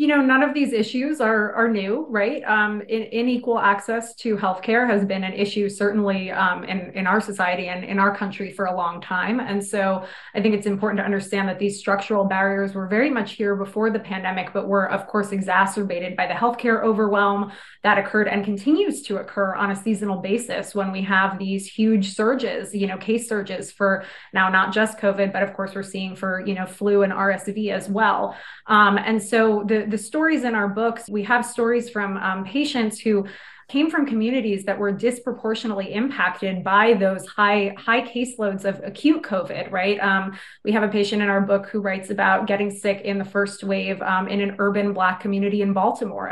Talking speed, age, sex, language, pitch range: 205 wpm, 20-39, female, English, 195-225 Hz